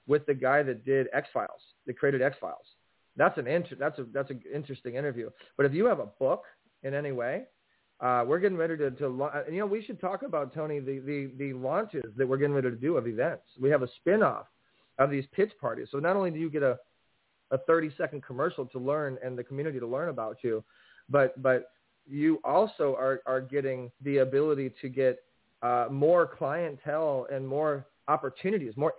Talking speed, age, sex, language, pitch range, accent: 215 wpm, 30-49, male, English, 130-155 Hz, American